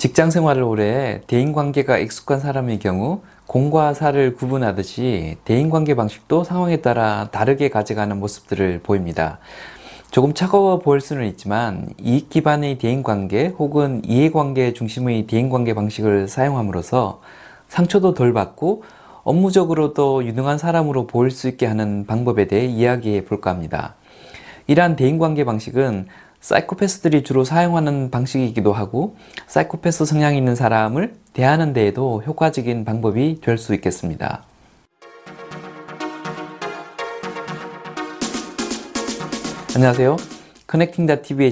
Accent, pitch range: native, 110-155 Hz